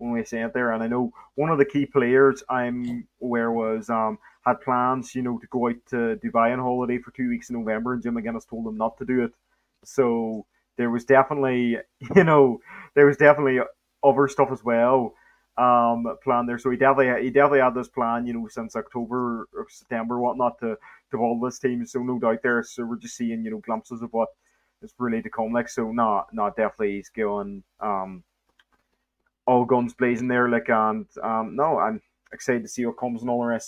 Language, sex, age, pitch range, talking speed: English, male, 20-39, 115-125 Hz, 220 wpm